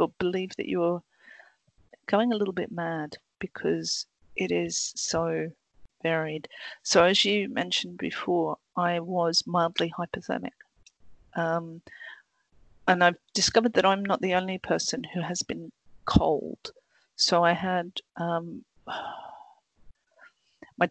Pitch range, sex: 165-185 Hz, female